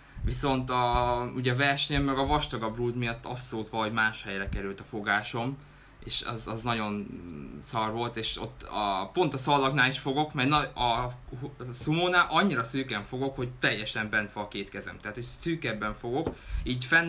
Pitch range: 105-125 Hz